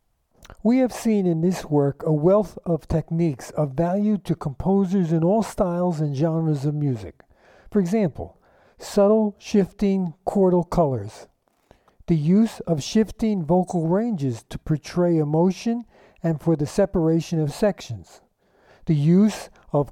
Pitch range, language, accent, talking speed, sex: 155-200 Hz, English, American, 135 wpm, male